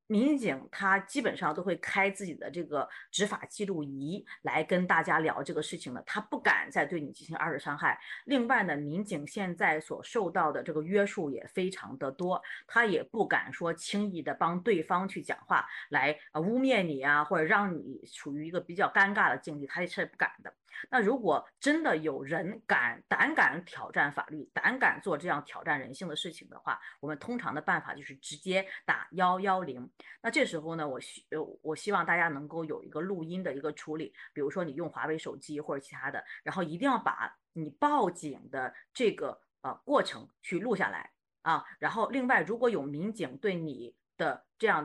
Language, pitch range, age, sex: Chinese, 155-205 Hz, 30-49, female